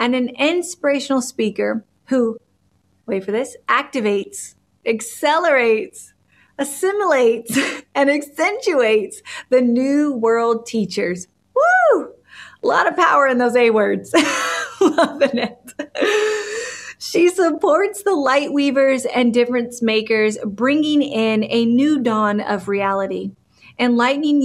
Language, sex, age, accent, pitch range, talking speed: English, female, 30-49, American, 215-280 Hz, 110 wpm